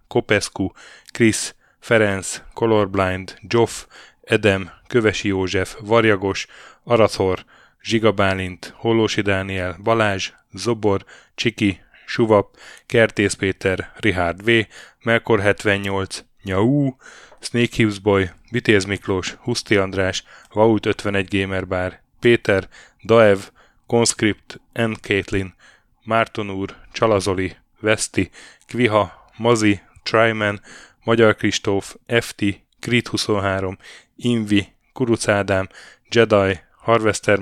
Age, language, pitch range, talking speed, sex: 10-29, Hungarian, 95-115 Hz, 85 wpm, male